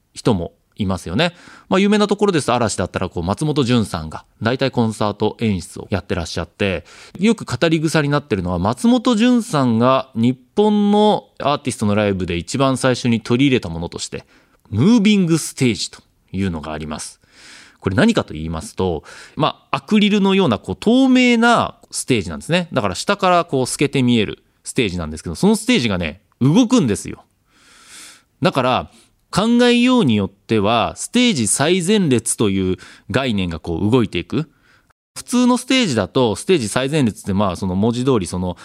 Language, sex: Japanese, male